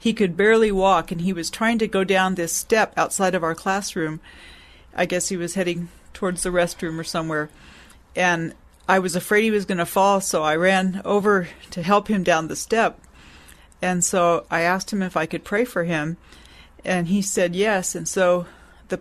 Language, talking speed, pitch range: English, 200 wpm, 175-225 Hz